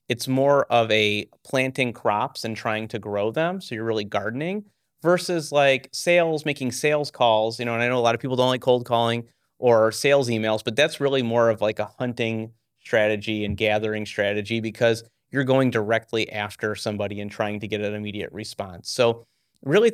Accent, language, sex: American, English, male